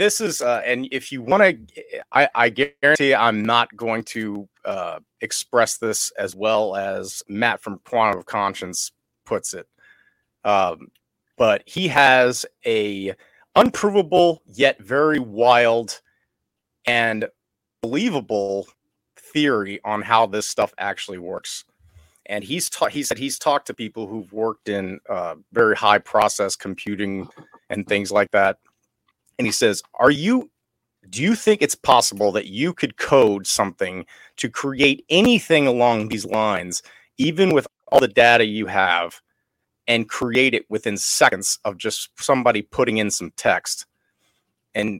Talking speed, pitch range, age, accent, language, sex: 145 wpm, 105-140 Hz, 30-49, American, English, male